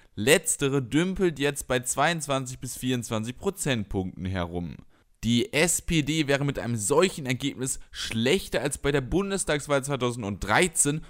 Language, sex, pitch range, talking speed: German, male, 120-155 Hz, 120 wpm